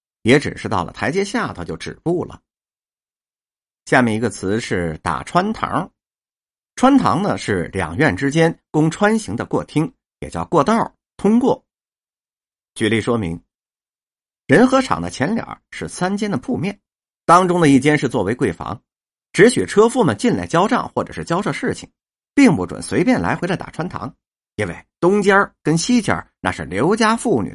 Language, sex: Chinese, male